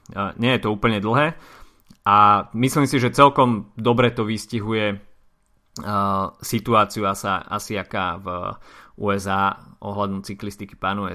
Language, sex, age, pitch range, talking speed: Slovak, male, 30-49, 100-130 Hz, 125 wpm